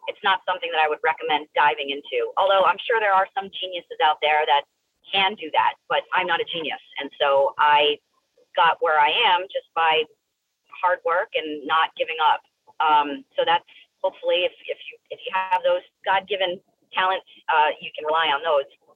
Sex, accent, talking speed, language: female, American, 195 wpm, English